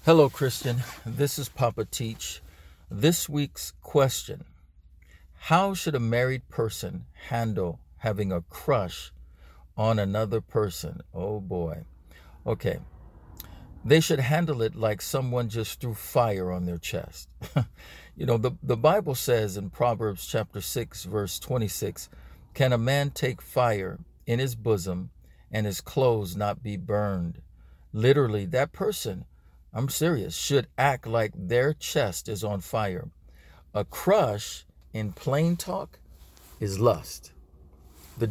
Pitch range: 85-130 Hz